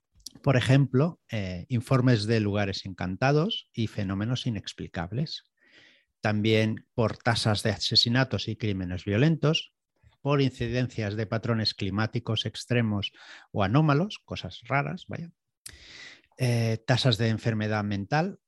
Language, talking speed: Spanish, 110 wpm